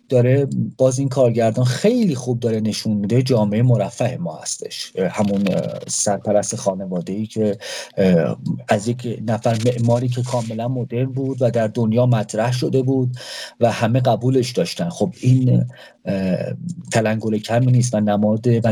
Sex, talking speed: male, 140 wpm